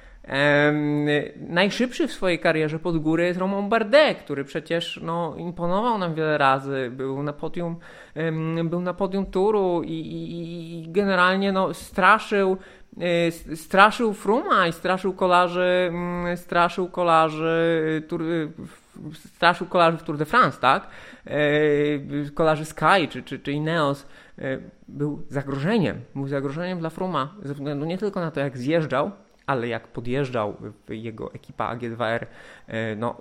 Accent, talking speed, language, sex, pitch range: native, 135 wpm, Polish, male, 135-175 Hz